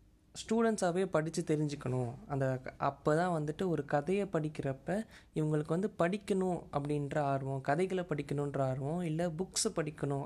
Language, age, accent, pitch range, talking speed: Tamil, 20-39, native, 135-160 Hz, 125 wpm